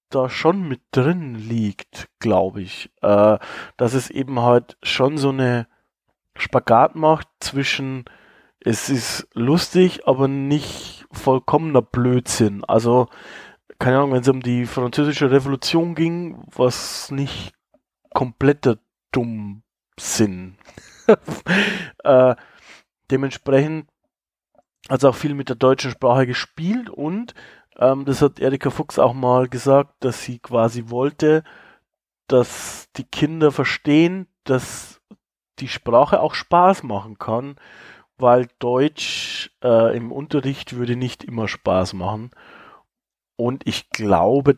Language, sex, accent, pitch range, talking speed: German, male, German, 120-150 Hz, 115 wpm